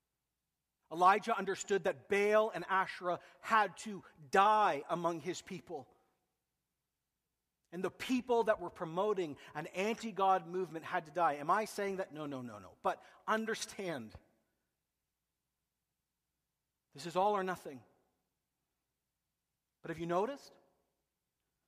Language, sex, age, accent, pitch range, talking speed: English, male, 40-59, American, 185-225 Hz, 120 wpm